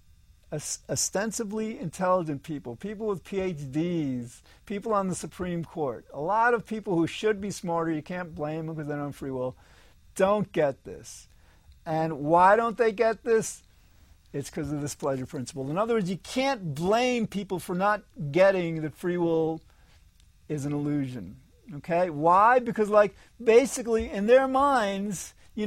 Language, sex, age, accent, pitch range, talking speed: English, male, 50-69, American, 150-210 Hz, 160 wpm